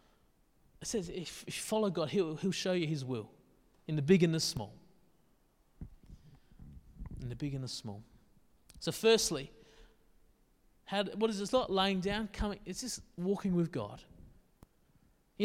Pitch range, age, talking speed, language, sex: 165-215 Hz, 30-49, 160 wpm, English, male